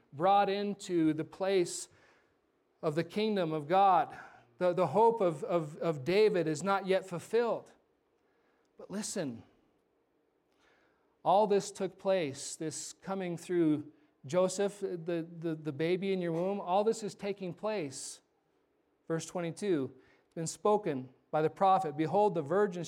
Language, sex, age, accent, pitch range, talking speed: English, male, 40-59, American, 175-215 Hz, 140 wpm